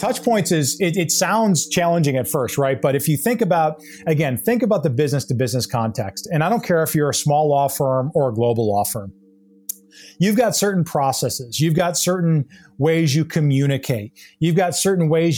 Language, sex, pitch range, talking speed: English, male, 135-170 Hz, 205 wpm